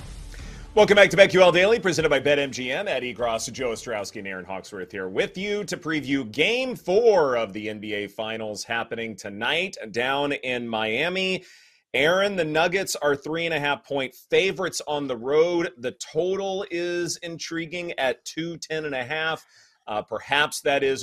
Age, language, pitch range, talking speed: 30-49, English, 110-165 Hz, 140 wpm